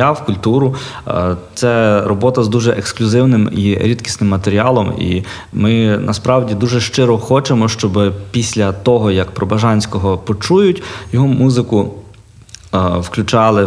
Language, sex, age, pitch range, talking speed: Ukrainian, male, 20-39, 100-120 Hz, 110 wpm